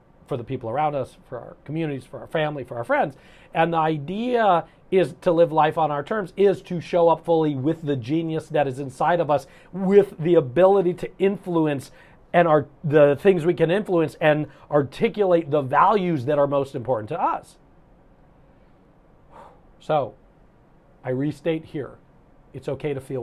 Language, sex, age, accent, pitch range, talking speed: English, male, 40-59, American, 135-180 Hz, 170 wpm